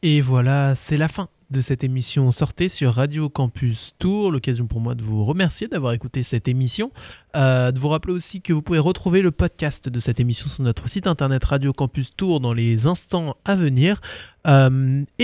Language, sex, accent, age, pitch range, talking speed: French, male, French, 20-39, 125-170 Hz, 195 wpm